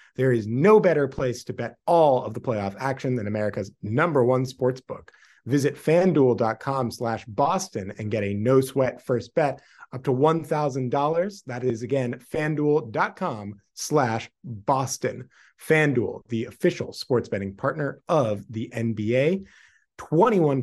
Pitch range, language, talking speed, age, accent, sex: 115-155 Hz, English, 135 wpm, 30-49, American, male